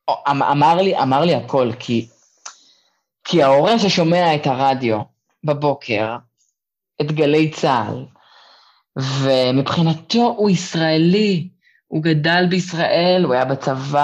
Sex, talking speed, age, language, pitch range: female, 105 wpm, 20-39, Hebrew, 135-195 Hz